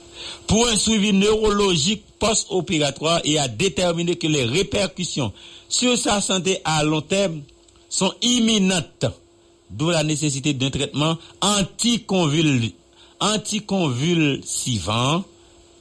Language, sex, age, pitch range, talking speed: English, male, 60-79, 110-165 Hz, 95 wpm